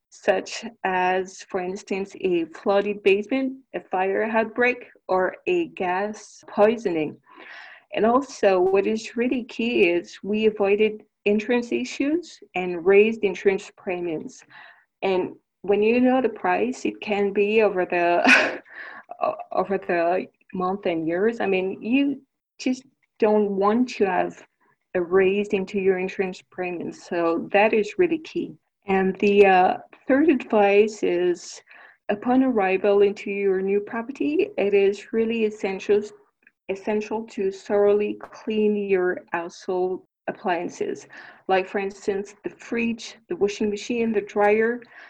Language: English